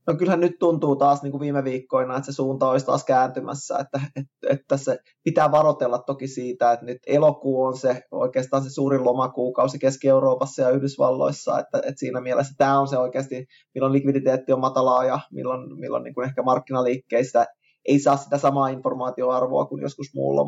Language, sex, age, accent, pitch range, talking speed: Finnish, male, 20-39, native, 130-145 Hz, 180 wpm